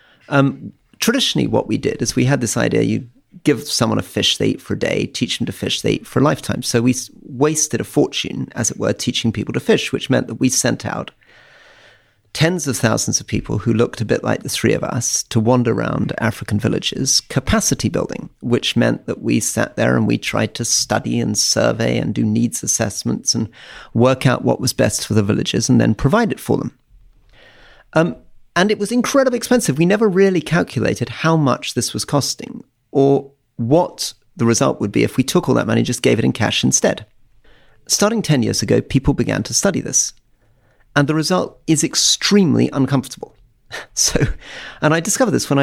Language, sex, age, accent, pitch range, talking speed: English, male, 40-59, British, 115-150 Hz, 205 wpm